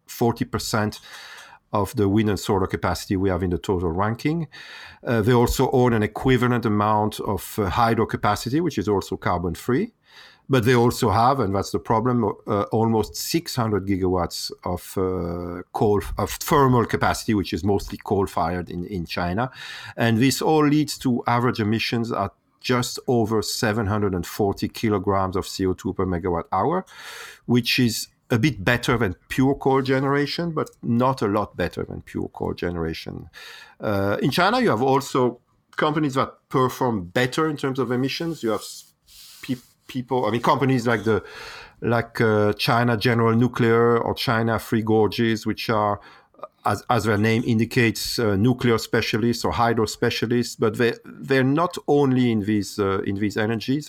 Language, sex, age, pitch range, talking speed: English, male, 50-69, 105-125 Hz, 155 wpm